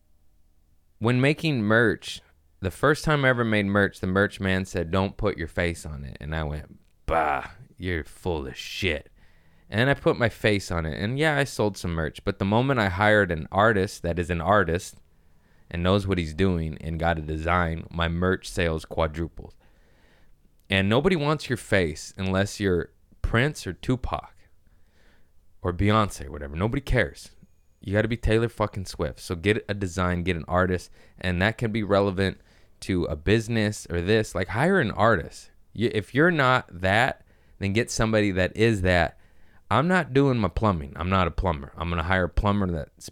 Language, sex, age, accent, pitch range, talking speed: English, male, 20-39, American, 80-105 Hz, 190 wpm